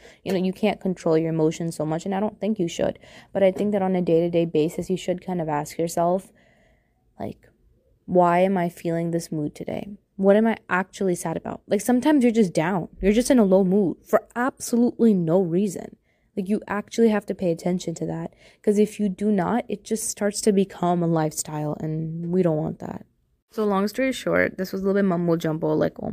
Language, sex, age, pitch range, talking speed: English, female, 20-39, 160-205 Hz, 225 wpm